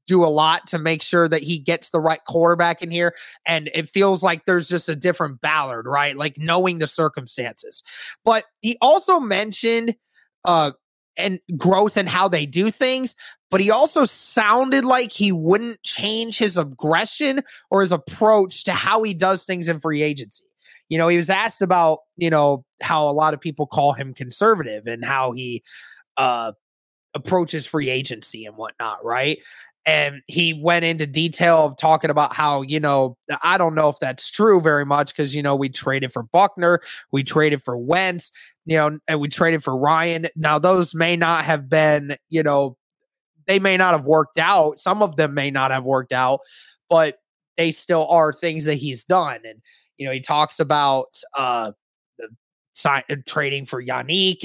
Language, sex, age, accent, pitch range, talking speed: English, male, 20-39, American, 145-185 Hz, 185 wpm